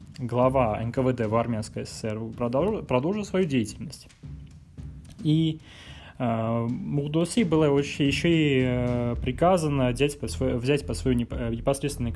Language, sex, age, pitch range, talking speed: Russian, male, 20-39, 115-150 Hz, 105 wpm